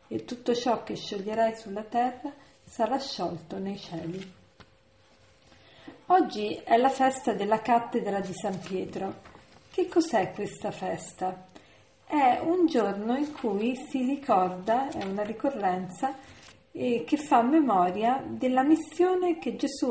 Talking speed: 125 wpm